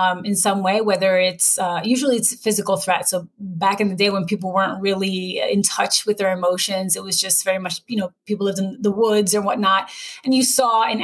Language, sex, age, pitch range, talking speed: English, female, 30-49, 185-225 Hz, 235 wpm